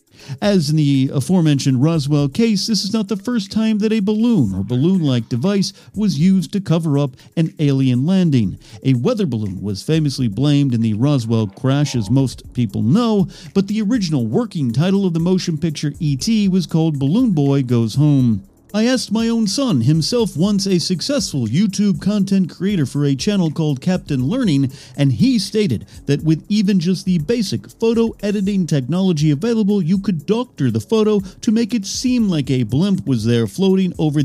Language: English